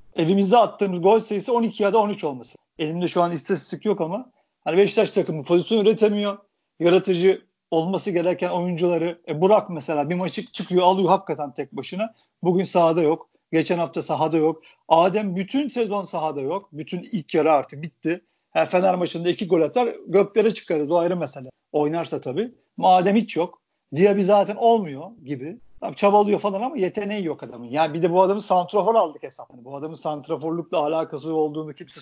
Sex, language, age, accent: male, Turkish, 50-69, native